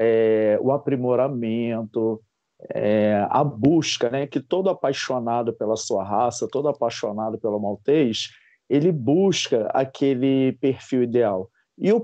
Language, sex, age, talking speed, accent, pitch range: Portuguese, male, 40-59, 120 wpm, Brazilian, 120-160 Hz